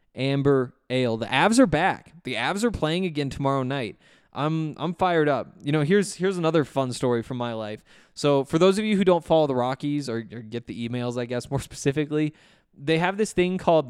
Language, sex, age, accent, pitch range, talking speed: English, male, 20-39, American, 125-155 Hz, 220 wpm